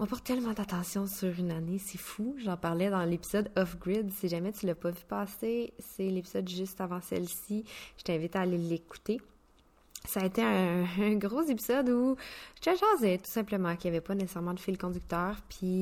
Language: French